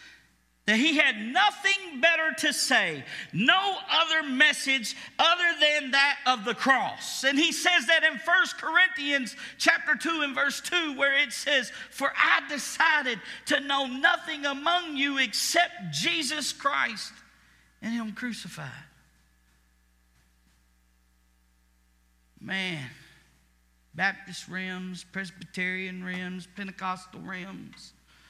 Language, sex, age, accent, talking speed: English, male, 50-69, American, 110 wpm